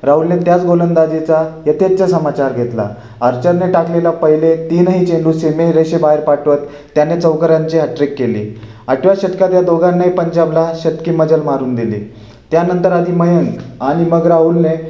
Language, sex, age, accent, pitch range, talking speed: Marathi, male, 30-49, native, 145-170 Hz, 135 wpm